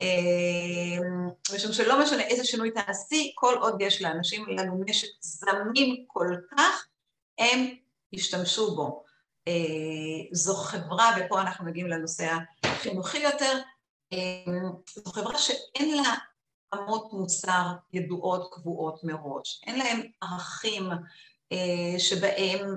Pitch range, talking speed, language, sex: 175-220 Hz, 115 wpm, Hebrew, female